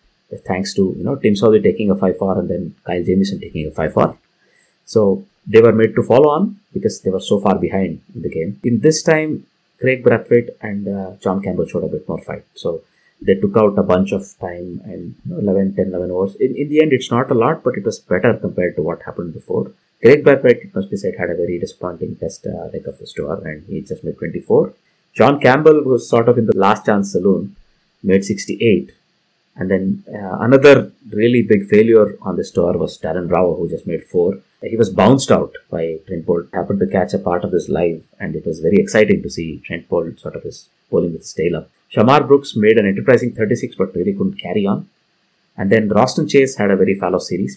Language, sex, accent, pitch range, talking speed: English, male, Indian, 95-130 Hz, 220 wpm